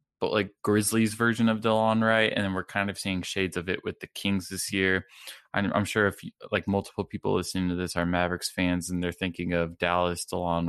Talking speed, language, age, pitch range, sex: 230 wpm, English, 20-39, 90-105 Hz, male